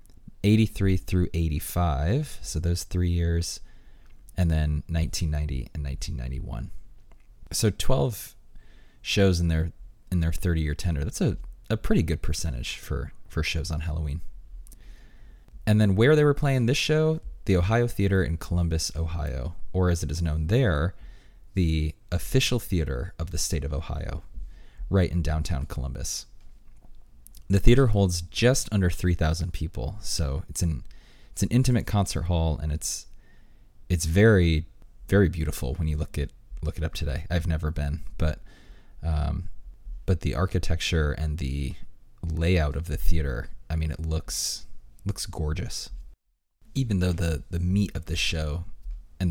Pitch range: 75-95 Hz